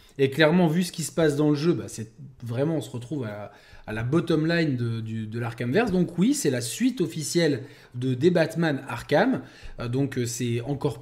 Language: French